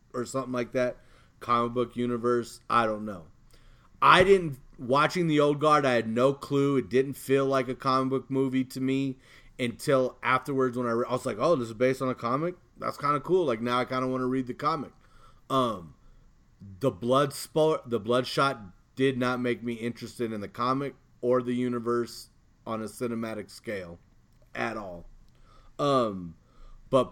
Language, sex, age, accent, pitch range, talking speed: English, male, 30-49, American, 115-135 Hz, 185 wpm